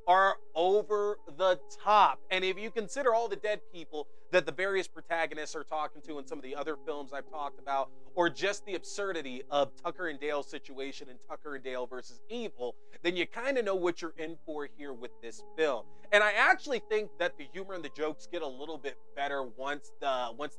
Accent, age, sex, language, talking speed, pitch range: American, 30-49, male, English, 215 wpm, 135-185 Hz